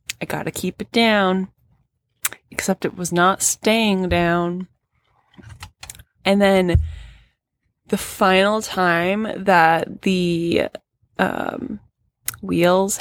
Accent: American